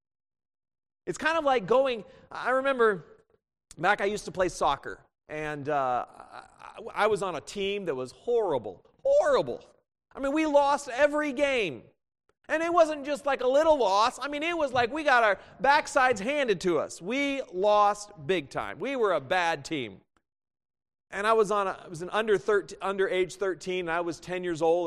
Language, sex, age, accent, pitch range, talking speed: English, male, 40-59, American, 180-285 Hz, 190 wpm